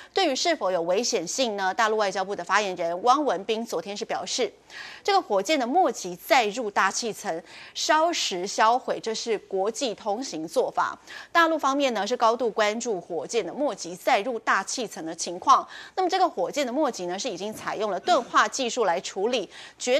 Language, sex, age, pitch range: Chinese, female, 30-49, 200-285 Hz